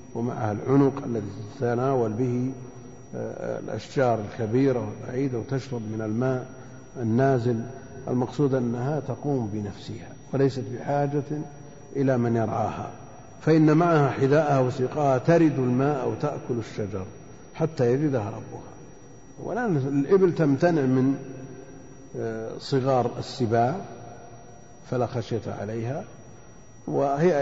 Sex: male